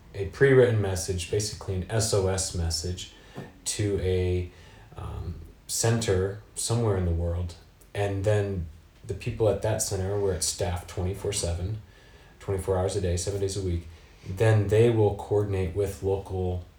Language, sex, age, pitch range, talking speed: English, male, 30-49, 90-105 Hz, 150 wpm